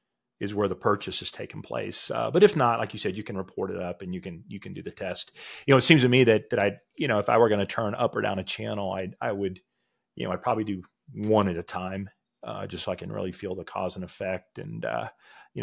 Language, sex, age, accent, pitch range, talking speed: English, male, 40-59, American, 100-140 Hz, 290 wpm